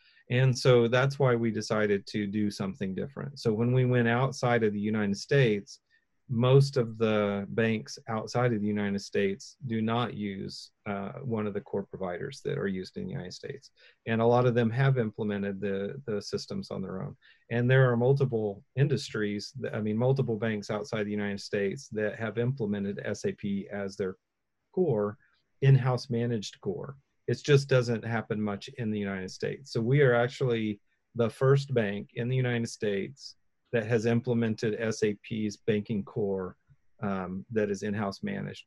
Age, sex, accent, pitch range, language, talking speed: 40-59, male, American, 100-120 Hz, English, 170 wpm